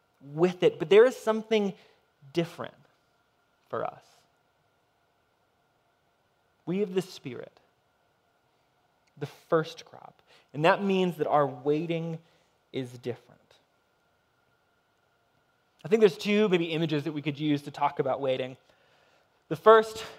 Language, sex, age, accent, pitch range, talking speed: English, male, 20-39, American, 145-205 Hz, 120 wpm